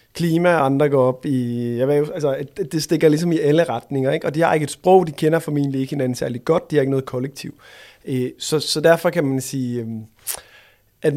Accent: native